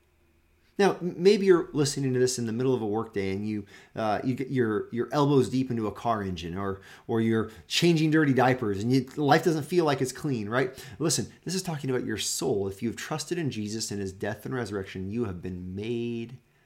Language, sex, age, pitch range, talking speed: English, male, 30-49, 110-155 Hz, 225 wpm